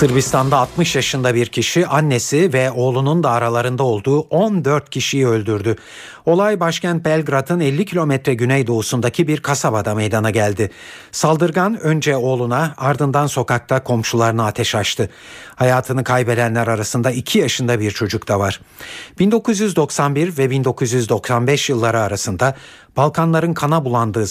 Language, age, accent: Turkish, 50-69, native